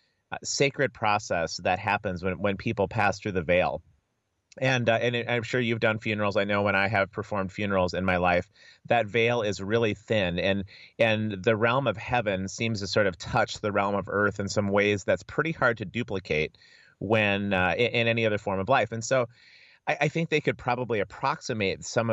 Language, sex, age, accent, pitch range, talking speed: English, male, 30-49, American, 95-120 Hz, 210 wpm